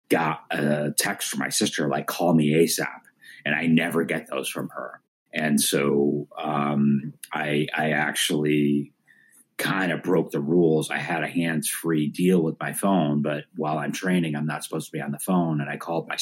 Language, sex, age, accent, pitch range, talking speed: English, male, 30-49, American, 75-85 Hz, 195 wpm